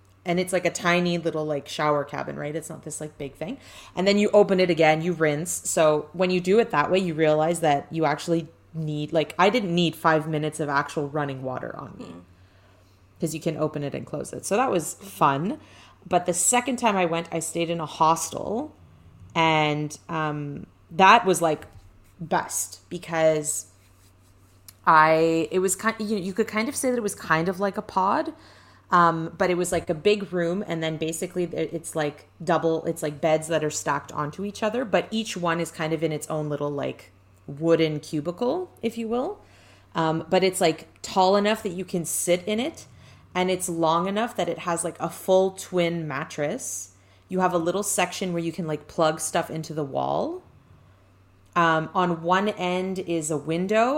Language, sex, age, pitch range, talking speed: English, female, 30-49, 150-185 Hz, 200 wpm